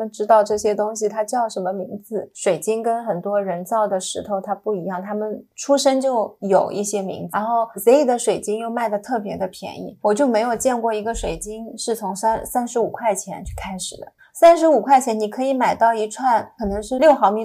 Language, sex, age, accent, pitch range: Chinese, female, 20-39, native, 190-230 Hz